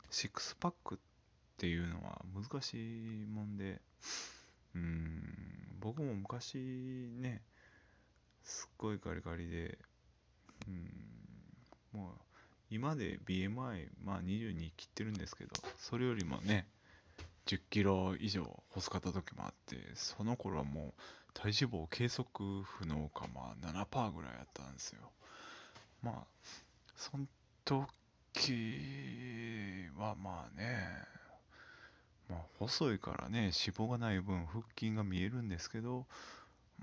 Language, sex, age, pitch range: Japanese, male, 20-39, 90-115 Hz